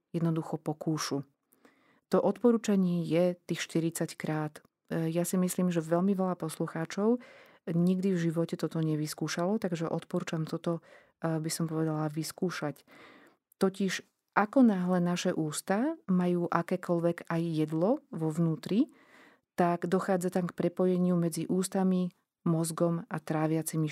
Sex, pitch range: female, 160-190 Hz